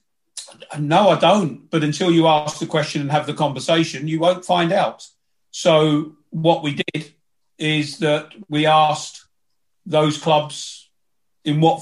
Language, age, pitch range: English, 40-59, 140-160 Hz